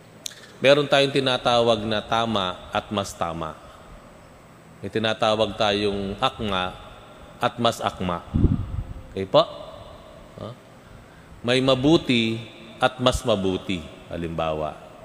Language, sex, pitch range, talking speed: Filipino, male, 100-140 Hz, 95 wpm